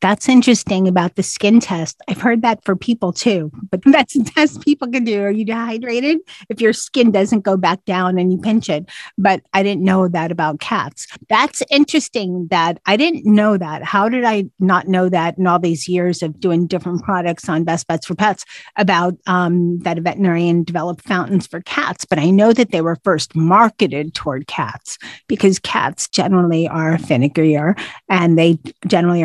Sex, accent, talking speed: female, American, 190 wpm